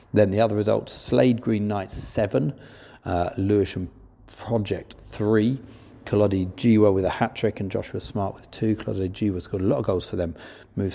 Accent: British